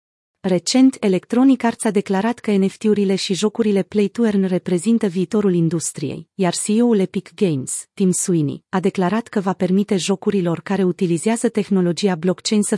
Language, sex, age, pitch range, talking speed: Romanian, female, 30-49, 180-220 Hz, 150 wpm